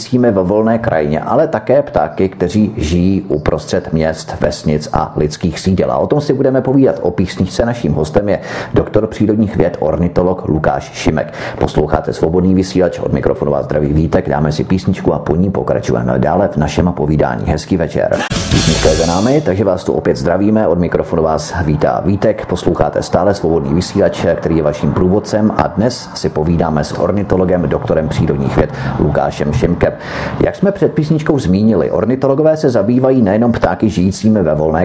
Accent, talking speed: native, 165 wpm